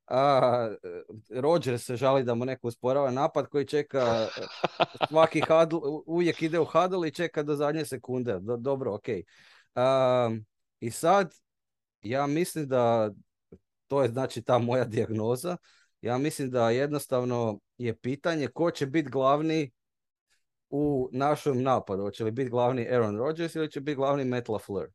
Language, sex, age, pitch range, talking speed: Croatian, male, 30-49, 110-145 Hz, 150 wpm